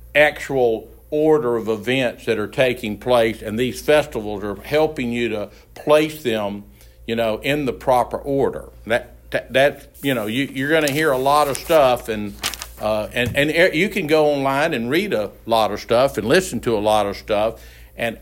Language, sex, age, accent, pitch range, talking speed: English, male, 60-79, American, 105-140 Hz, 200 wpm